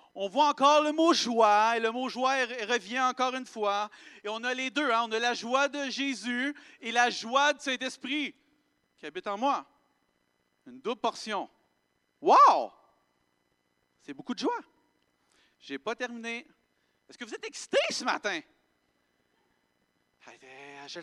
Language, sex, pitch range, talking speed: French, male, 195-280 Hz, 165 wpm